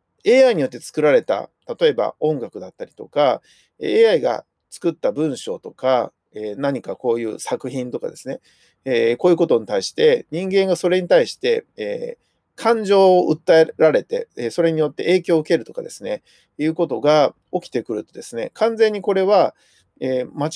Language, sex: Japanese, male